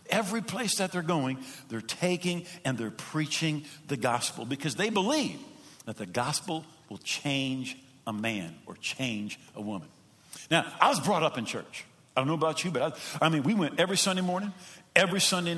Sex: male